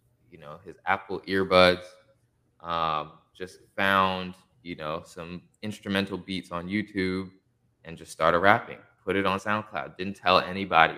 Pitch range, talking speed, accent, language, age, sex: 90-120 Hz, 140 wpm, American, English, 20-39, male